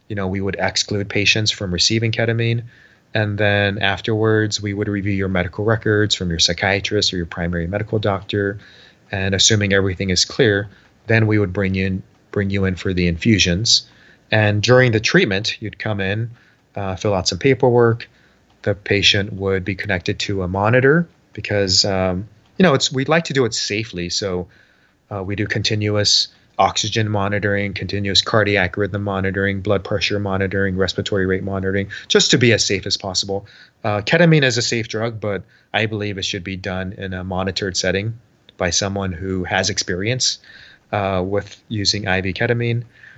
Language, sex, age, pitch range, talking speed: English, male, 30-49, 95-110 Hz, 175 wpm